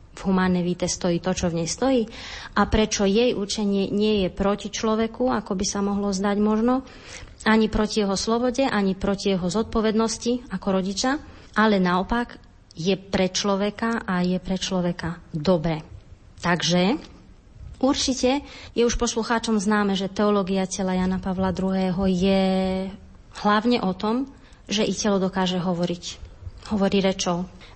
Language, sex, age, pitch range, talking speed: Slovak, female, 30-49, 190-220 Hz, 145 wpm